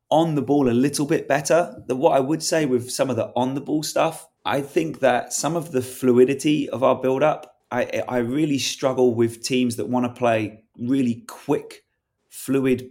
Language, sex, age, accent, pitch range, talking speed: English, male, 20-39, British, 115-135 Hz, 195 wpm